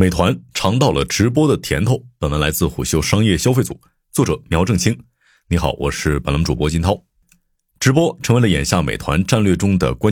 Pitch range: 85-120 Hz